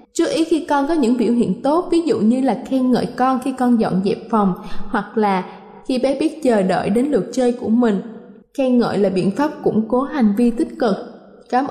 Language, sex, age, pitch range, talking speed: Vietnamese, female, 10-29, 215-275 Hz, 230 wpm